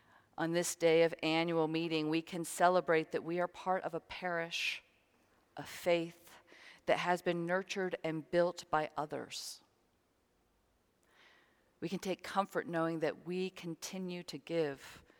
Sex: female